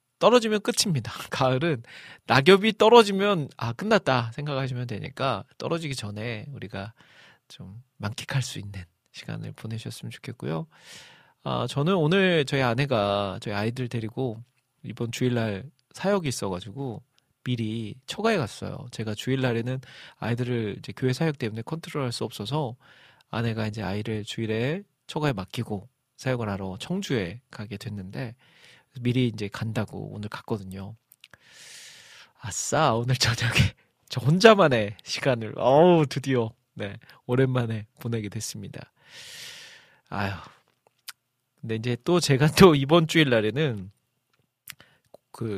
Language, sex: Korean, male